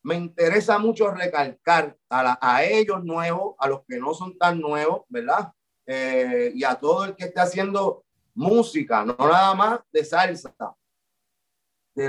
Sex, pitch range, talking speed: male, 165-225 Hz, 160 wpm